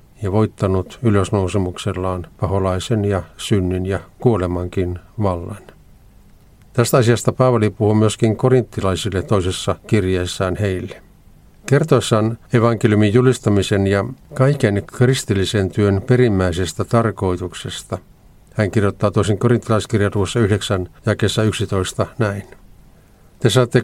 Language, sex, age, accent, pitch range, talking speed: Finnish, male, 50-69, native, 95-115 Hz, 95 wpm